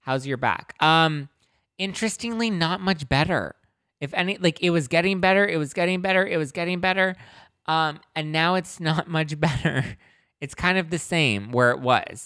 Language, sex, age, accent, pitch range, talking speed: English, male, 20-39, American, 100-160 Hz, 185 wpm